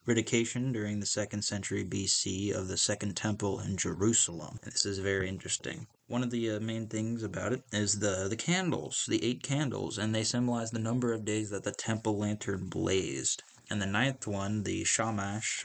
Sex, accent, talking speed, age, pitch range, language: male, American, 190 wpm, 20-39, 100-120 Hz, English